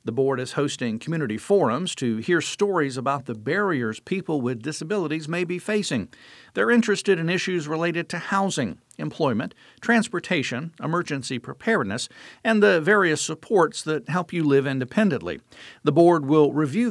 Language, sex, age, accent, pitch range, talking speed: English, male, 50-69, American, 135-180 Hz, 150 wpm